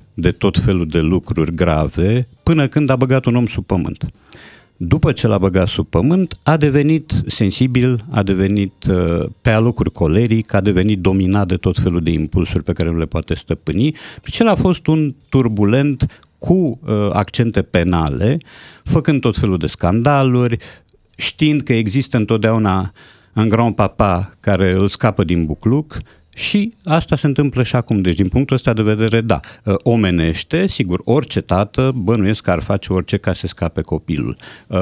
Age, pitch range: 50-69, 90-130 Hz